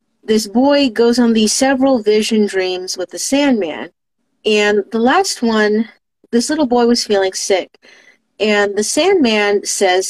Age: 40-59